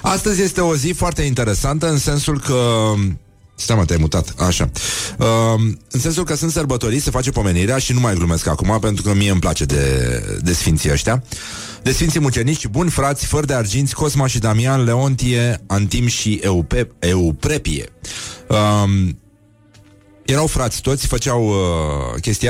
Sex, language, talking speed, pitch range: male, Romanian, 155 wpm, 95-130 Hz